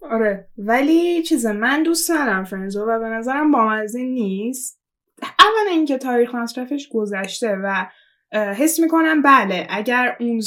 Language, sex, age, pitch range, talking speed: Persian, female, 10-29, 215-290 Hz, 130 wpm